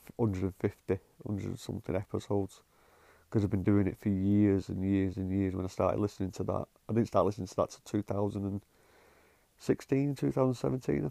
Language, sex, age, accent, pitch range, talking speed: English, male, 30-49, British, 95-110 Hz, 160 wpm